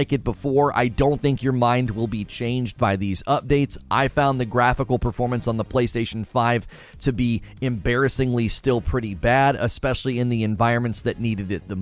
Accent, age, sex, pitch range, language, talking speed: American, 30-49, male, 115-145 Hz, English, 185 wpm